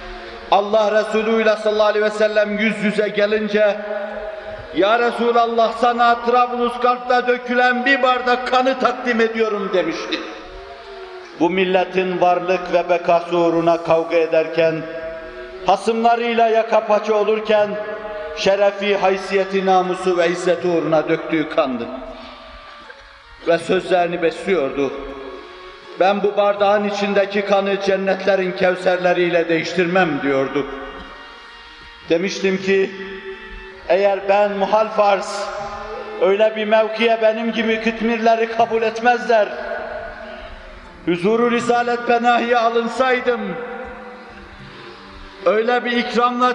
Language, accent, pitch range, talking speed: Turkish, native, 185-235 Hz, 95 wpm